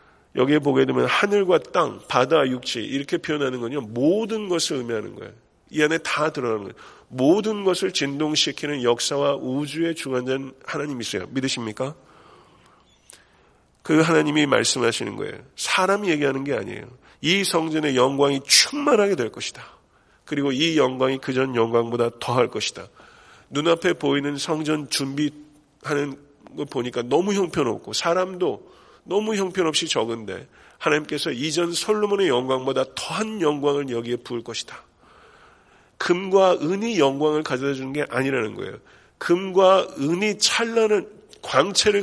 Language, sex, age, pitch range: Korean, male, 40-59, 135-185 Hz